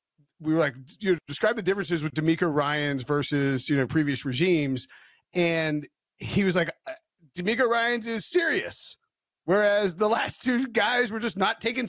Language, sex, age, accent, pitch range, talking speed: English, male, 30-49, American, 165-225 Hz, 165 wpm